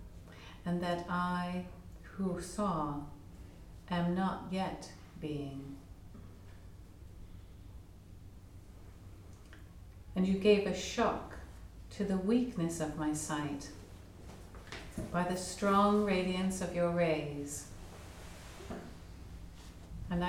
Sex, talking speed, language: female, 85 wpm, English